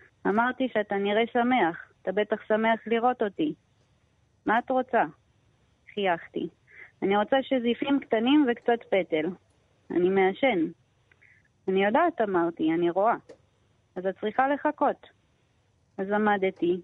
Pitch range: 185-225 Hz